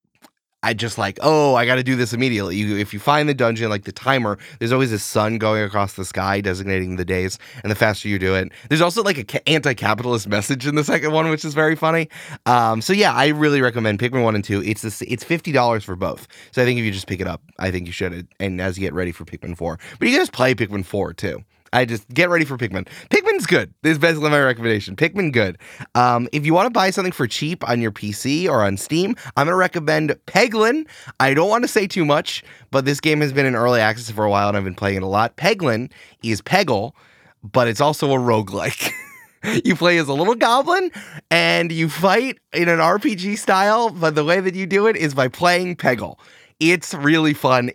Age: 20-39